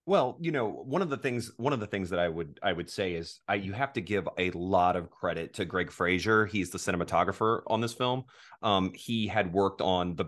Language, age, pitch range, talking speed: English, 30-49, 90-110 Hz, 245 wpm